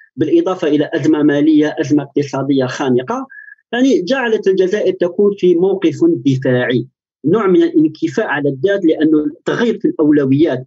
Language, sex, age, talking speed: Arabic, male, 40-59, 130 wpm